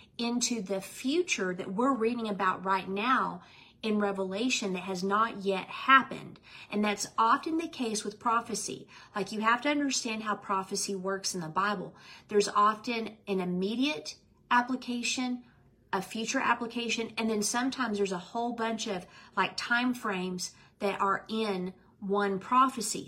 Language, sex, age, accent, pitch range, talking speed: English, female, 40-59, American, 185-235 Hz, 150 wpm